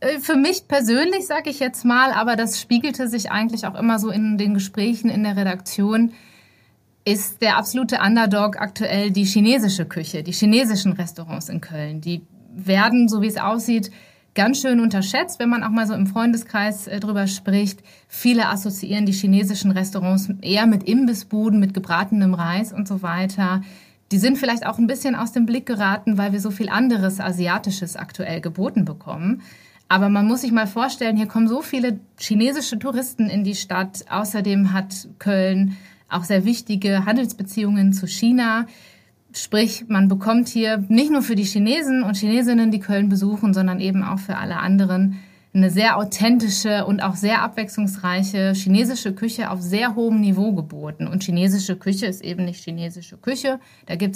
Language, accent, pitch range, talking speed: German, German, 190-225 Hz, 170 wpm